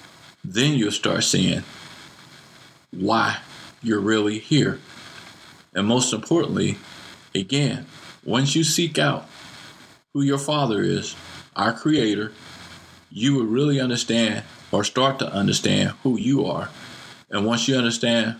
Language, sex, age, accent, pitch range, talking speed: English, male, 50-69, American, 110-135 Hz, 120 wpm